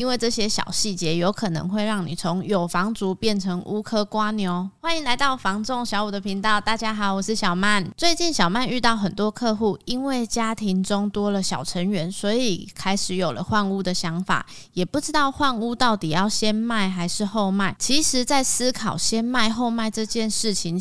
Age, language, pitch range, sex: 20-39, Chinese, 195-235 Hz, female